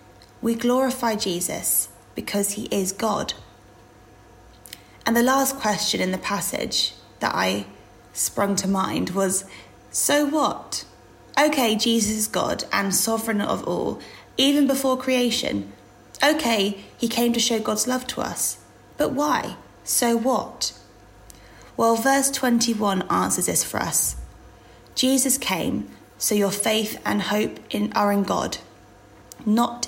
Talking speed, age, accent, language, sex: 130 wpm, 20-39, British, English, female